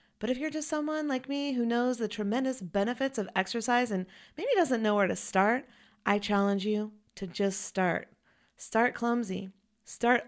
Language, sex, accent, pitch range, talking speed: English, female, American, 185-230 Hz, 175 wpm